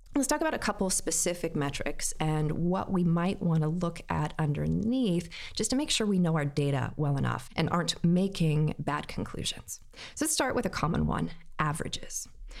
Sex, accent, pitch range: female, American, 155-200 Hz